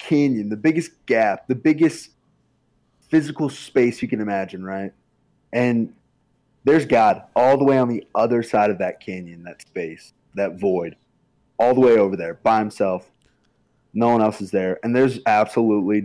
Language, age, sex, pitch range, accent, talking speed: English, 20-39, male, 100-130 Hz, American, 165 wpm